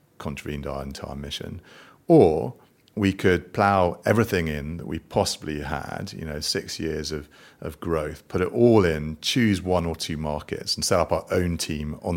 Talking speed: 180 wpm